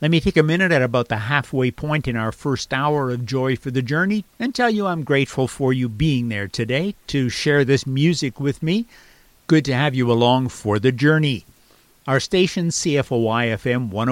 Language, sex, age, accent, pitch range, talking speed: English, male, 50-69, American, 125-165 Hz, 195 wpm